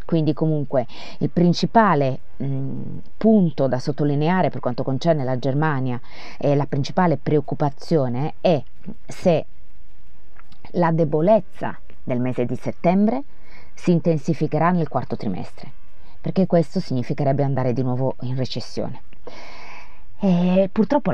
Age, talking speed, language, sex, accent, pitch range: 30-49, 110 wpm, Italian, female, native, 130-175 Hz